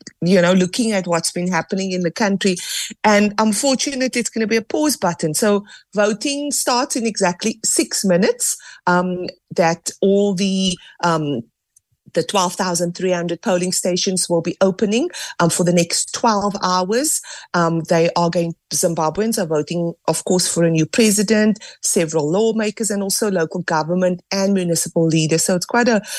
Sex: female